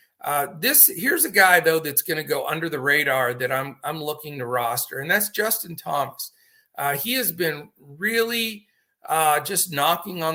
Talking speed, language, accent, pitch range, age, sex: 185 wpm, English, American, 145-195 Hz, 50-69, male